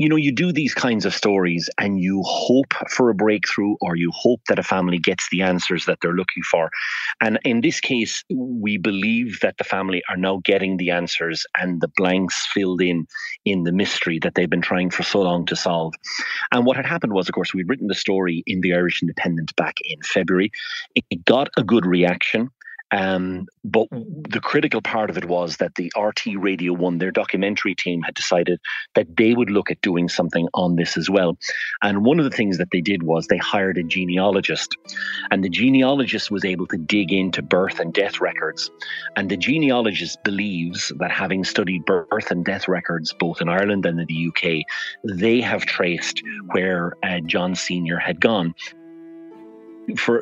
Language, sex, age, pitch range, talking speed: English, male, 40-59, 85-105 Hz, 195 wpm